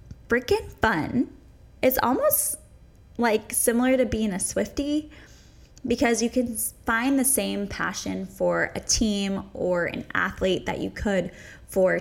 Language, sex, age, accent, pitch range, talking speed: English, female, 20-39, American, 215-275 Hz, 135 wpm